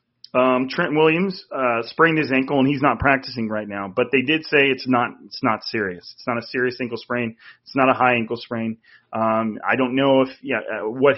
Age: 30-49